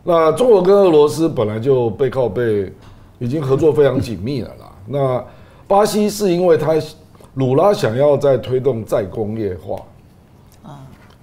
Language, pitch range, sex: Chinese, 105-140 Hz, male